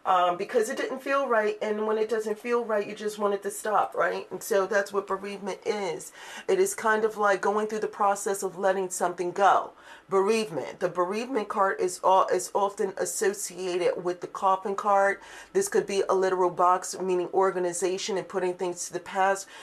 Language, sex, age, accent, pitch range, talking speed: English, female, 40-59, American, 180-215 Hz, 200 wpm